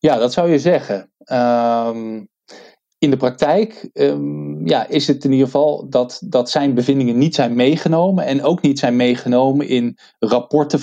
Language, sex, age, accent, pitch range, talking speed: Dutch, male, 20-39, Dutch, 120-150 Hz, 150 wpm